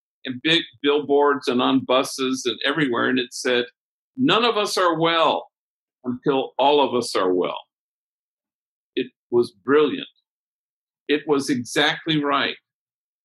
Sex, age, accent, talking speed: male, 50-69, American, 130 wpm